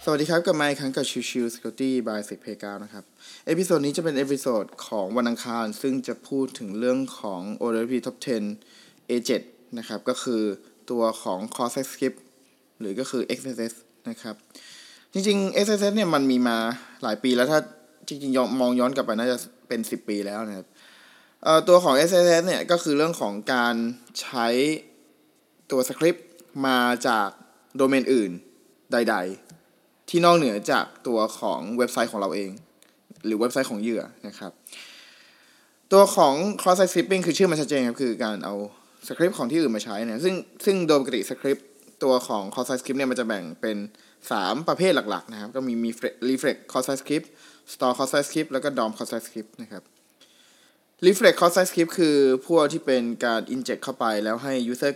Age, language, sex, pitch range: 20-39, Thai, male, 115-165 Hz